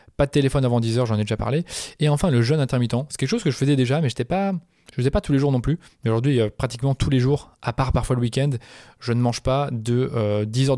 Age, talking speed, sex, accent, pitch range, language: 20-39, 265 wpm, male, French, 110-135 Hz, French